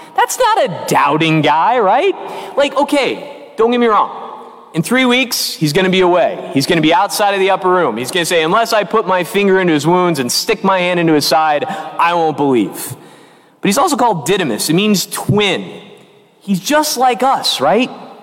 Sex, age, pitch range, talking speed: male, 30-49, 185-265 Hz, 210 wpm